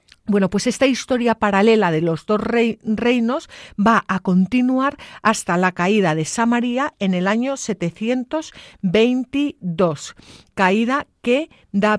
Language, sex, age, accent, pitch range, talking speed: Spanish, female, 50-69, Spanish, 190-235 Hz, 120 wpm